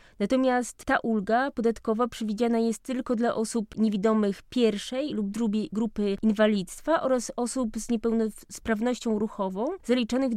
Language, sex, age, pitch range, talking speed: Polish, female, 20-39, 215-245 Hz, 120 wpm